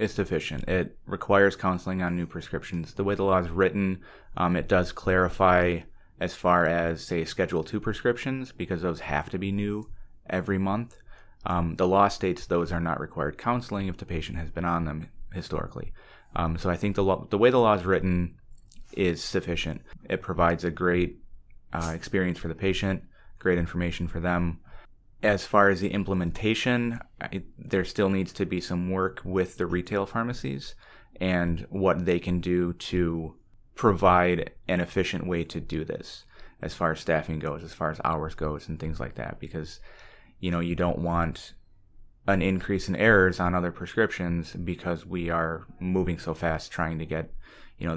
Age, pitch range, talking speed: 30-49, 85-95 Hz, 180 wpm